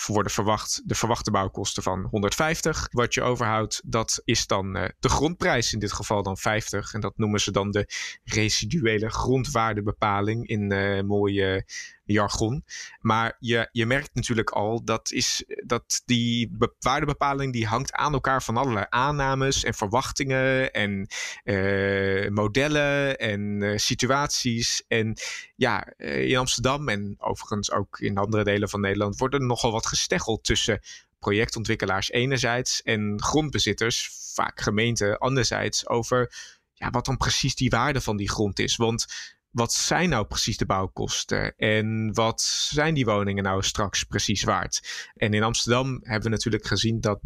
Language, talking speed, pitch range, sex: Dutch, 155 wpm, 105-125 Hz, male